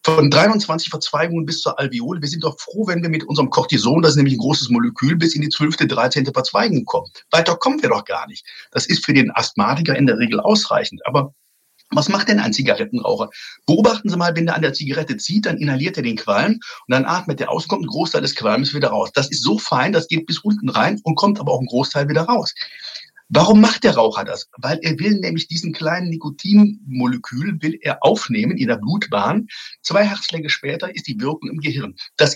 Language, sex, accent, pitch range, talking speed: German, male, German, 145-205 Hz, 220 wpm